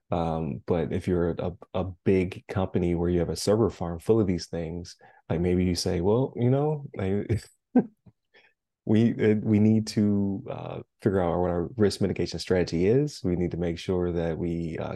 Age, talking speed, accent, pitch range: 20-39, 195 wpm, American, 90-105 Hz